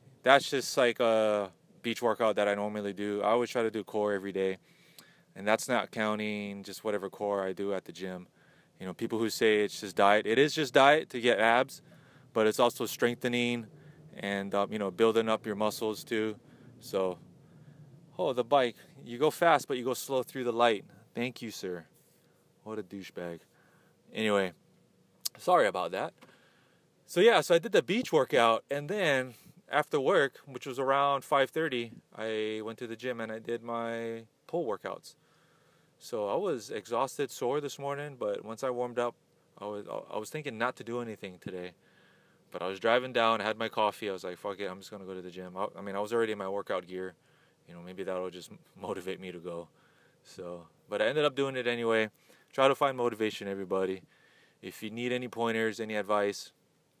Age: 20-39